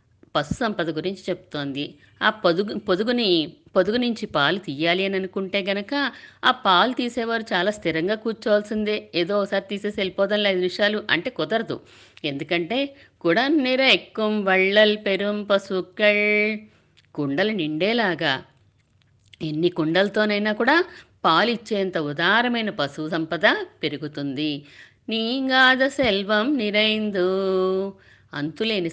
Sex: female